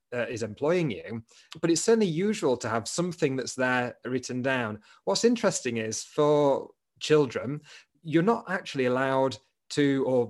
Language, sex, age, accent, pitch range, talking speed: English, male, 30-49, British, 125-155 Hz, 150 wpm